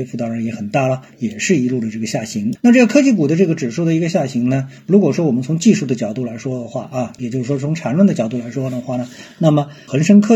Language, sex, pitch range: Chinese, male, 130-205 Hz